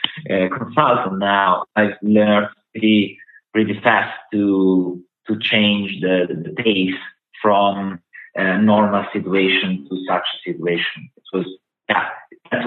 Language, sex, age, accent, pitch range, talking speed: English, male, 30-49, Italian, 100-110 Hz, 125 wpm